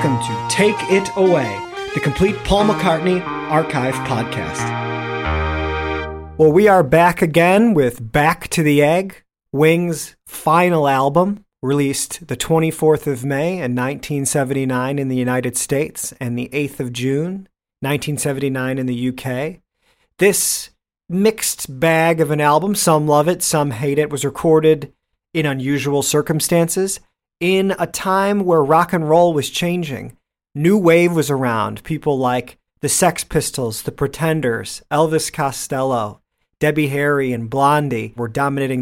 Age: 40-59